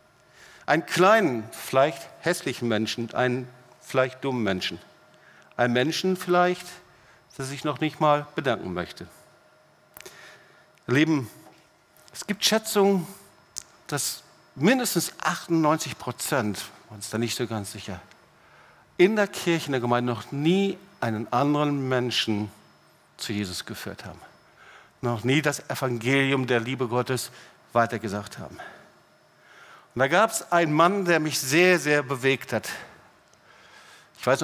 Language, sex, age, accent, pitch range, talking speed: German, male, 50-69, German, 115-145 Hz, 125 wpm